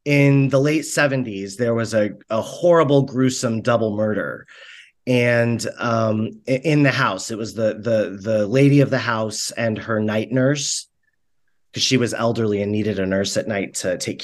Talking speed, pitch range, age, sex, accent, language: 175 wpm, 110-145 Hz, 30-49, male, American, English